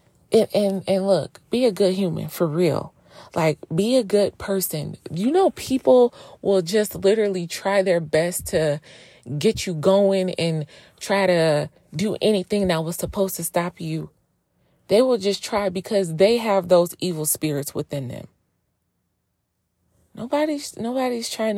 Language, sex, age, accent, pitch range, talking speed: English, female, 20-39, American, 170-235 Hz, 150 wpm